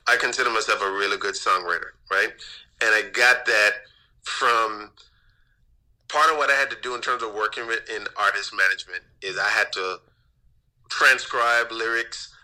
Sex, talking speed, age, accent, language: male, 160 wpm, 30-49, American, English